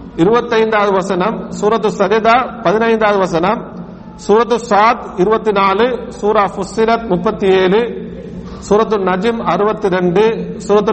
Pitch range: 195-230 Hz